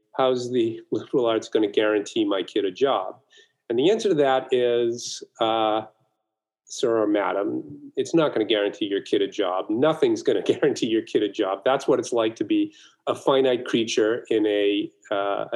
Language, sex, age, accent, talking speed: English, male, 40-59, American, 195 wpm